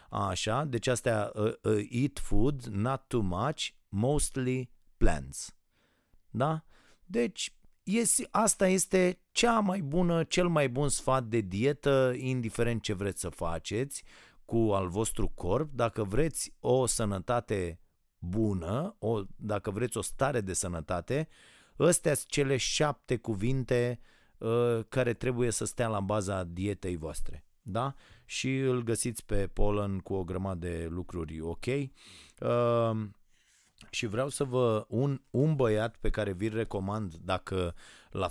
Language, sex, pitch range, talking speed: Romanian, male, 95-125 Hz, 130 wpm